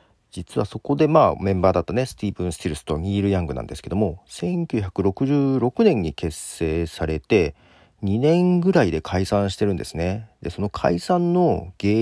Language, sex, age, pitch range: Japanese, male, 40-59, 85-115 Hz